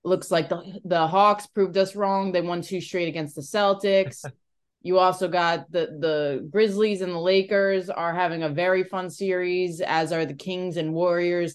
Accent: American